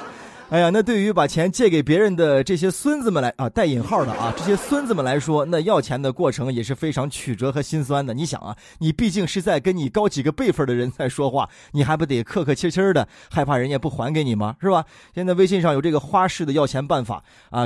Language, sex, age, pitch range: Chinese, male, 20-39, 130-185 Hz